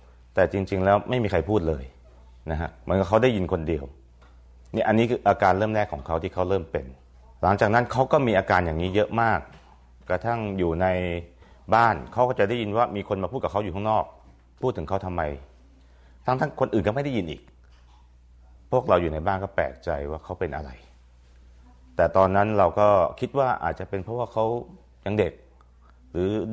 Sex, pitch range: male, 65-100 Hz